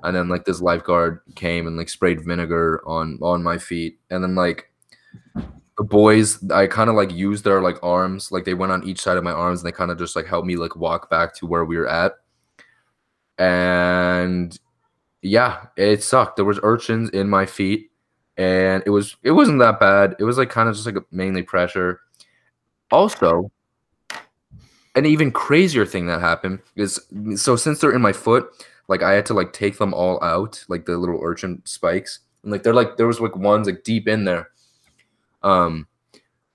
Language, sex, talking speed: English, male, 195 wpm